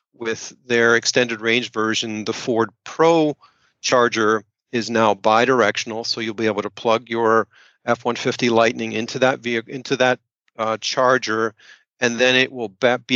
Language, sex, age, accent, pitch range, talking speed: English, male, 40-59, American, 115-130 Hz, 150 wpm